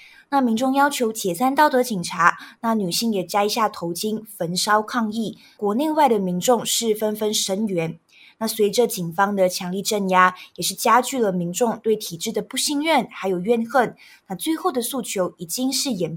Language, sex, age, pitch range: Chinese, female, 20-39, 185-240 Hz